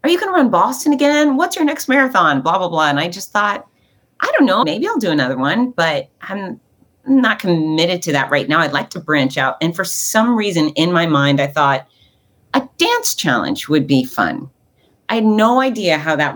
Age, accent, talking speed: 30-49, American, 220 wpm